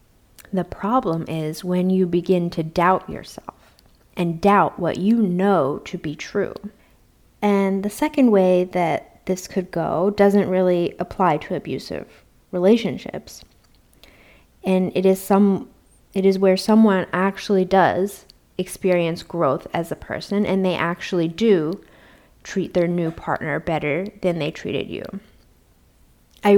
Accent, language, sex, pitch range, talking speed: American, English, female, 175-205 Hz, 135 wpm